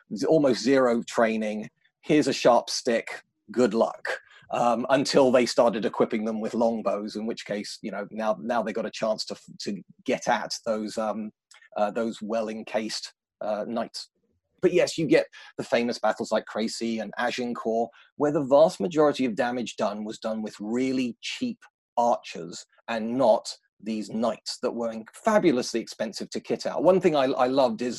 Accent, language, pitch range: British, English, 110-145 Hz